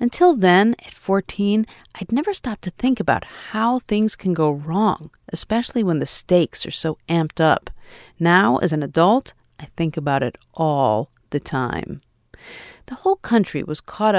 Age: 50-69